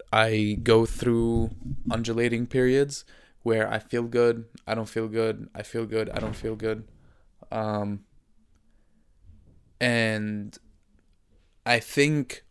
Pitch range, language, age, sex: 110-135 Hz, English, 20-39, male